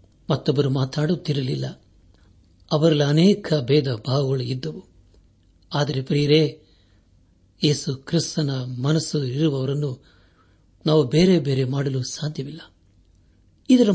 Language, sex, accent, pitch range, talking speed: Kannada, male, native, 100-160 Hz, 80 wpm